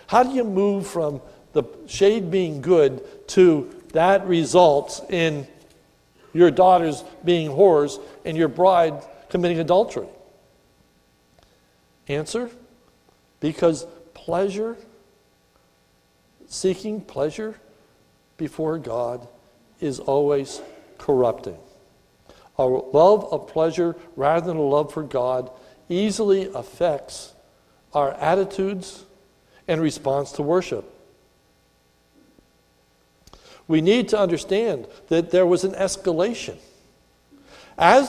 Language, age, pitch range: English, 60-79, 145-195 Hz